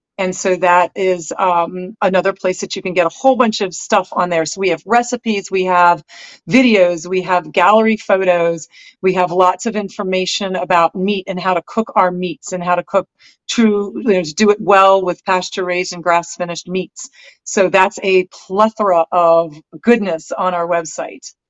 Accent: American